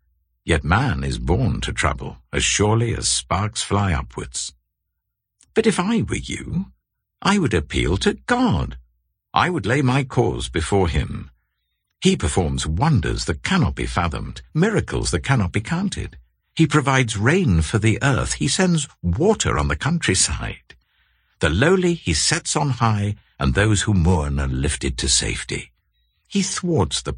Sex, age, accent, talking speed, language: male, 60-79, British, 155 wpm, English